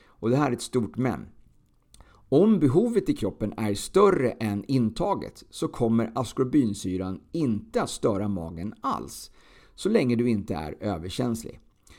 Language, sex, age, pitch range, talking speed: Swedish, male, 50-69, 100-135 Hz, 145 wpm